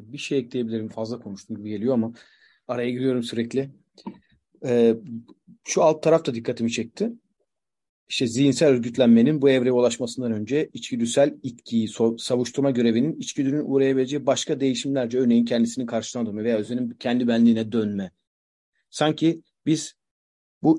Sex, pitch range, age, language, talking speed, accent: male, 115-145 Hz, 40-59, Turkish, 125 wpm, native